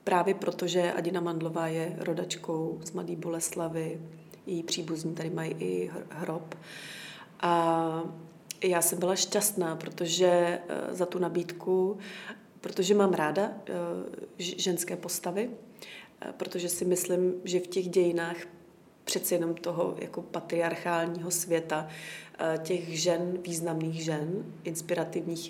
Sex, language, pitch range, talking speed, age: female, Czech, 170-185 Hz, 110 wpm, 30-49